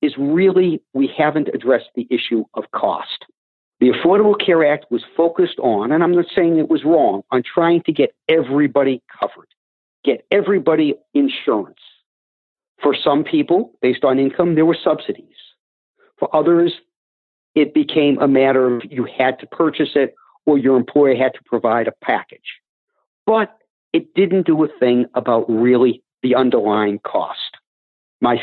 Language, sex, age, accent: English, male, 50-69, American